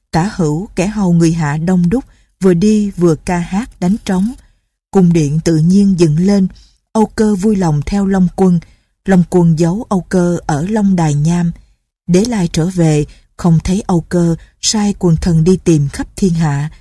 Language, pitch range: Vietnamese, 160-195 Hz